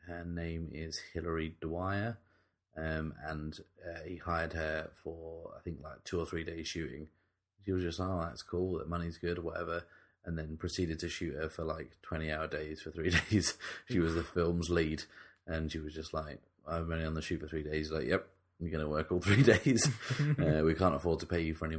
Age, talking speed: 30-49, 220 wpm